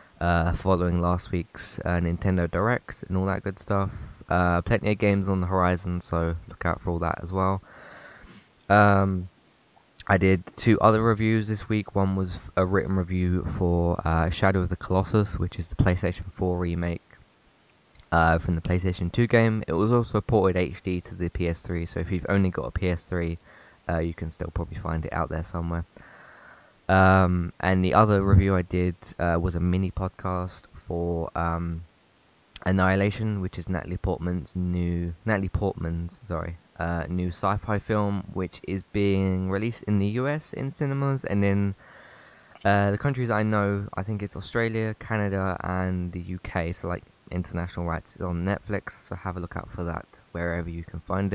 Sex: male